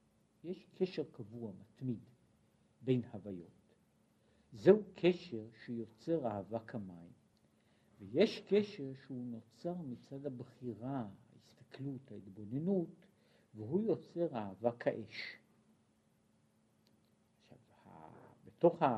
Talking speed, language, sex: 75 wpm, Hebrew, male